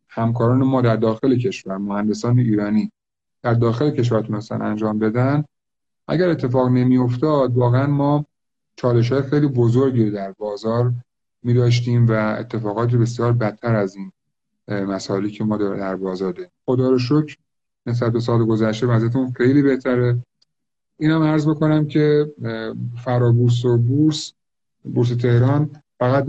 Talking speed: 130 wpm